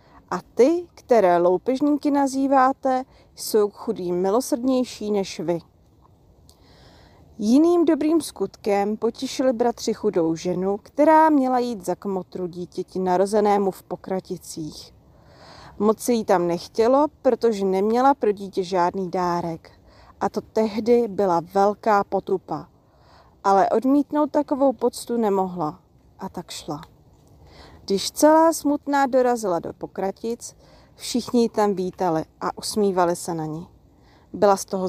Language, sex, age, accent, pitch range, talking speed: Czech, female, 30-49, native, 185-260 Hz, 115 wpm